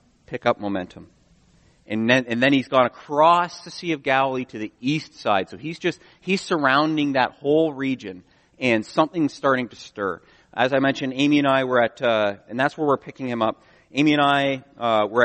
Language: English